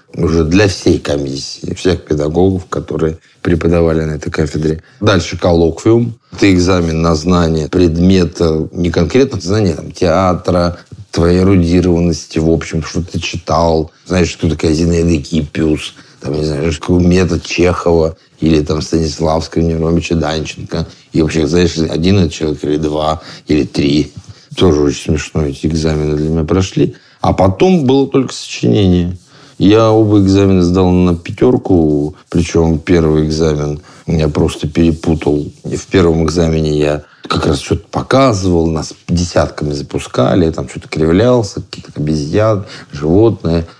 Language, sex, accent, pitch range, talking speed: Russian, male, native, 80-90 Hz, 125 wpm